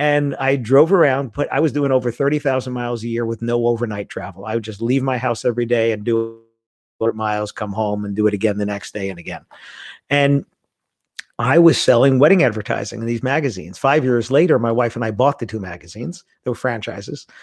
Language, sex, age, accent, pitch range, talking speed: English, male, 50-69, American, 110-135 Hz, 215 wpm